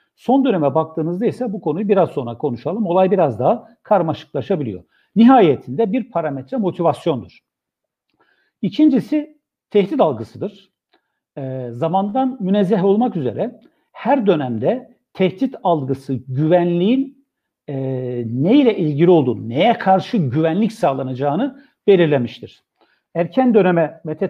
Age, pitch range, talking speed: 60-79, 145-220 Hz, 105 wpm